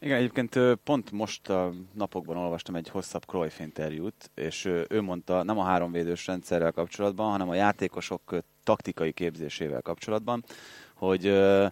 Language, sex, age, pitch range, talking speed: Hungarian, male, 20-39, 90-110 Hz, 135 wpm